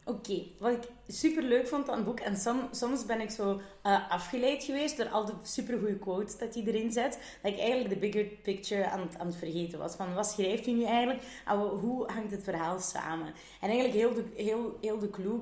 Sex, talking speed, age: female, 225 wpm, 30-49